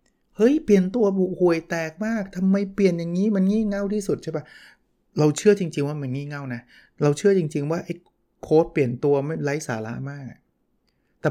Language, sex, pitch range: Thai, male, 125-160 Hz